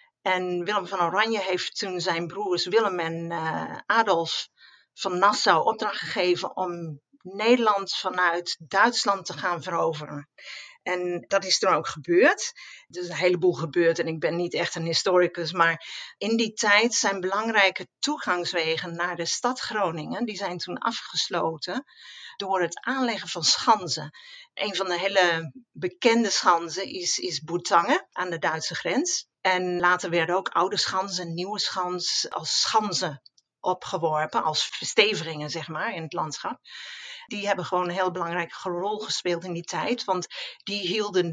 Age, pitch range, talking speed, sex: 50-69, 170-210 Hz, 155 wpm, female